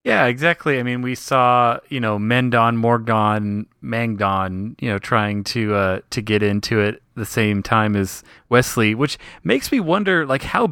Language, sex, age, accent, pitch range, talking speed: English, male, 30-49, American, 110-145 Hz, 175 wpm